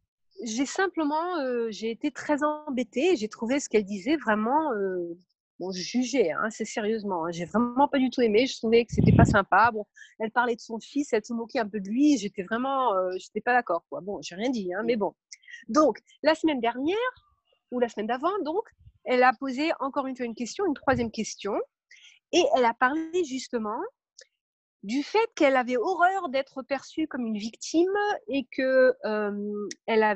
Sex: female